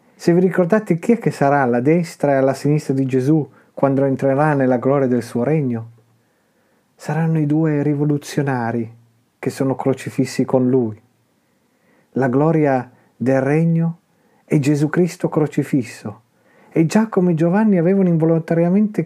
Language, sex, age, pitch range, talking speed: Italian, male, 40-59, 125-160 Hz, 140 wpm